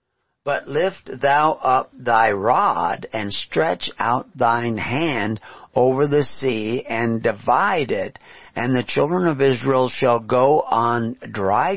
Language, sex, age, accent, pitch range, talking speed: English, male, 50-69, American, 120-150 Hz, 135 wpm